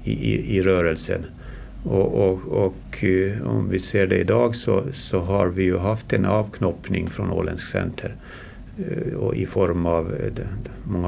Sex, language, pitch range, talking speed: male, Swedish, 90-115 Hz, 150 wpm